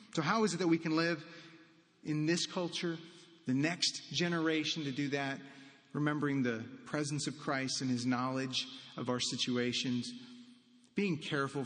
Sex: male